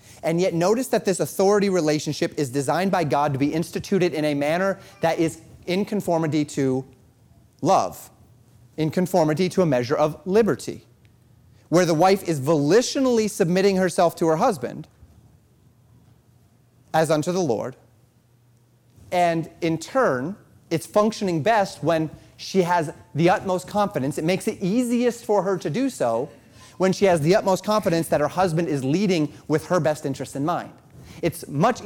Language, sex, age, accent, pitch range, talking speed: English, male, 30-49, American, 135-190 Hz, 160 wpm